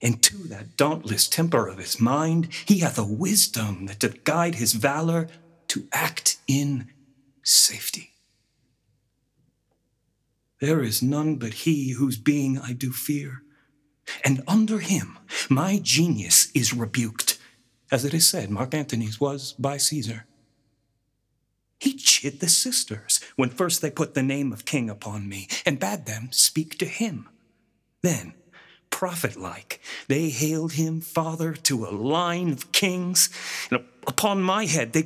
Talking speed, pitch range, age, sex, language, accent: 140 wpm, 120-165 Hz, 30-49, male, English, American